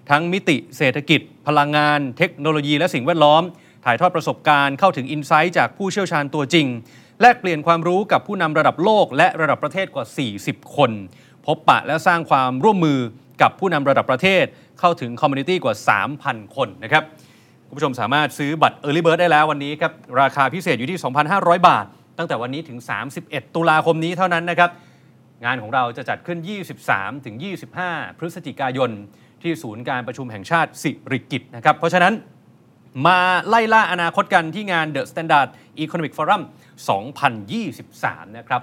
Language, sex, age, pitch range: Thai, male, 30-49, 135-175 Hz